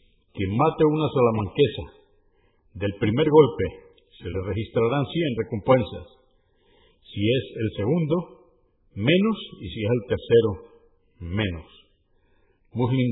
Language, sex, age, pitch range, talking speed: Spanish, male, 50-69, 95-145 Hz, 110 wpm